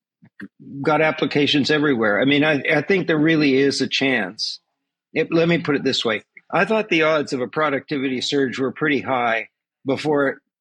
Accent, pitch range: American, 125-155 Hz